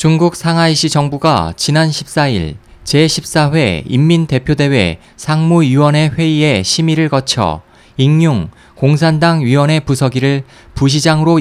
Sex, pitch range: male, 130-160 Hz